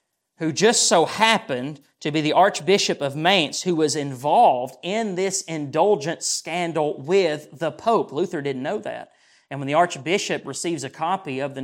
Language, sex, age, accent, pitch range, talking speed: English, male, 30-49, American, 145-235 Hz, 170 wpm